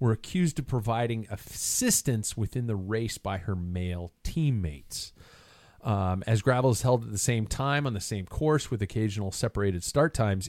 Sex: male